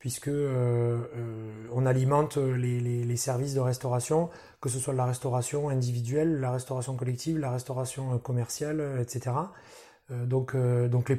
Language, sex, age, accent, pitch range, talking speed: French, male, 30-49, French, 125-155 Hz, 155 wpm